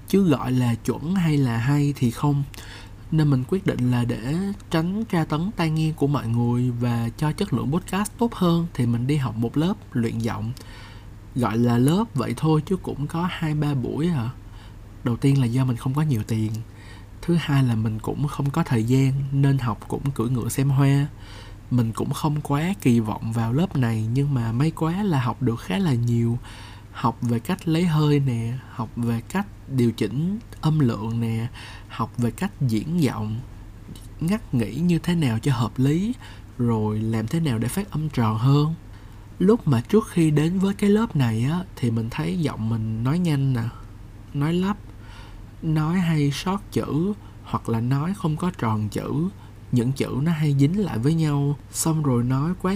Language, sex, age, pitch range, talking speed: Vietnamese, male, 20-39, 115-155 Hz, 195 wpm